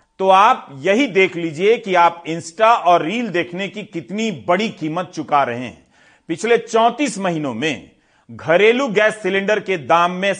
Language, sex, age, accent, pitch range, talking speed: Hindi, male, 40-59, native, 170-210 Hz, 160 wpm